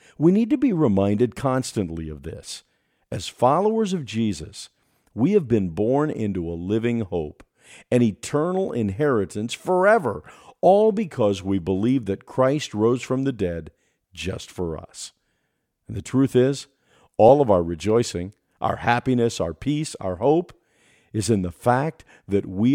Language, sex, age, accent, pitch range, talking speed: English, male, 50-69, American, 100-135 Hz, 150 wpm